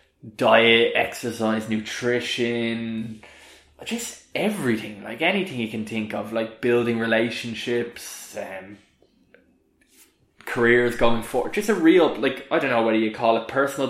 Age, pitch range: 20-39, 110-130 Hz